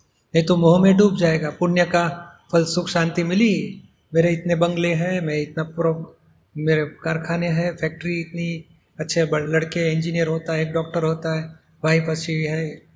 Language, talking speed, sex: Hindi, 170 wpm, male